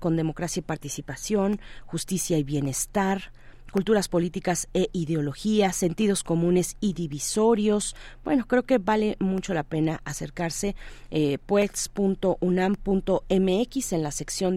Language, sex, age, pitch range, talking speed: Spanish, female, 40-59, 165-200 Hz, 115 wpm